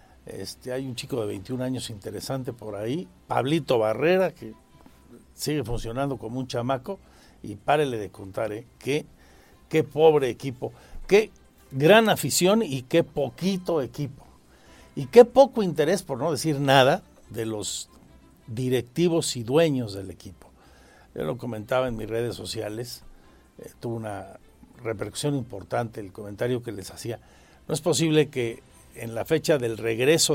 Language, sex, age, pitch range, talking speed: Spanish, male, 60-79, 105-155 Hz, 150 wpm